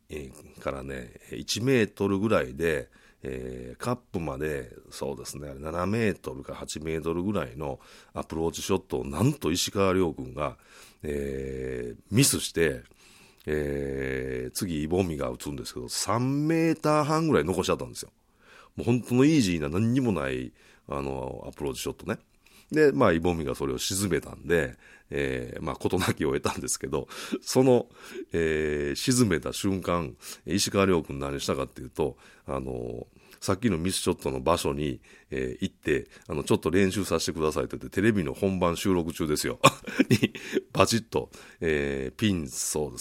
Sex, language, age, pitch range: male, Japanese, 40-59, 70-100 Hz